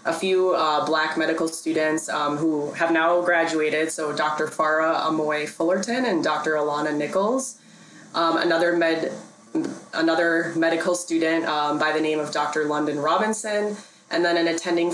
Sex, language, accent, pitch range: female, English, American, 150-180 Hz